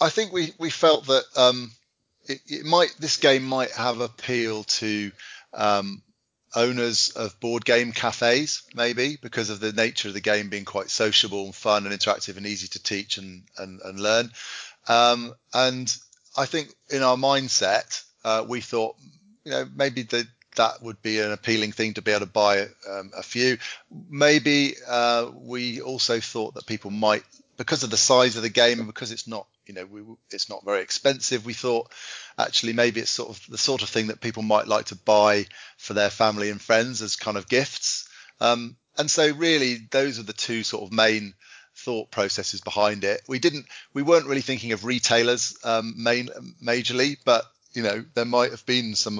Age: 30-49